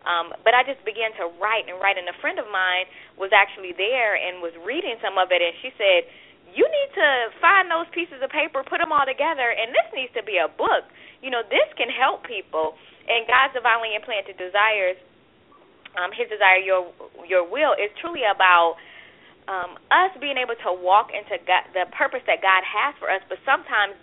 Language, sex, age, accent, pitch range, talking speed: English, female, 20-39, American, 185-270 Hz, 205 wpm